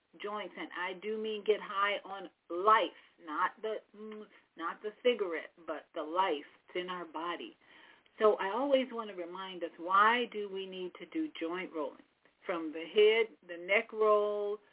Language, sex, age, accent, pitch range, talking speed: English, female, 40-59, American, 180-240 Hz, 170 wpm